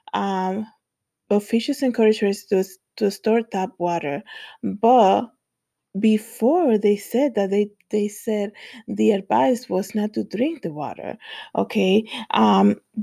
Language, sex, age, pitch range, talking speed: English, female, 20-39, 190-230 Hz, 125 wpm